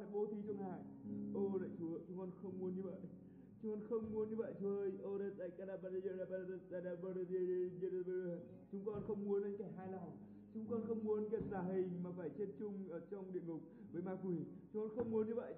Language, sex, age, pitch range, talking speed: Vietnamese, male, 20-39, 185-205 Hz, 190 wpm